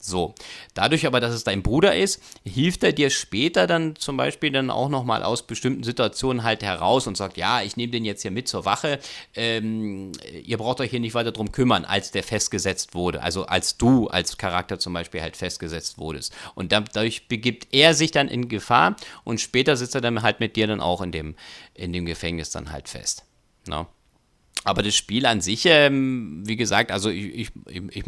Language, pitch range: German, 95-120 Hz